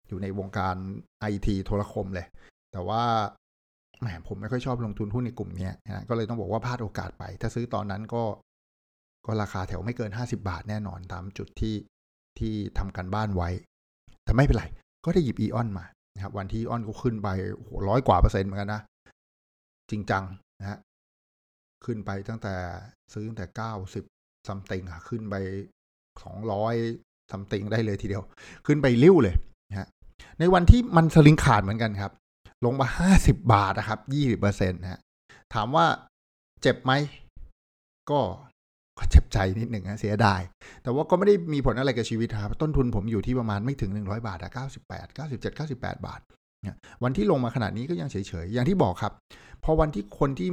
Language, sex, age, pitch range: Thai, male, 60-79, 95-120 Hz